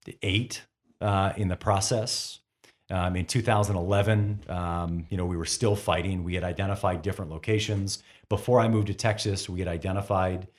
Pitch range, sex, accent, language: 85-105 Hz, male, American, English